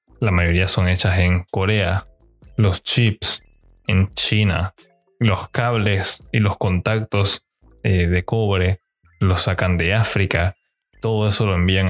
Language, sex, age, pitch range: Spanish, male, 20-39, 95-110 Hz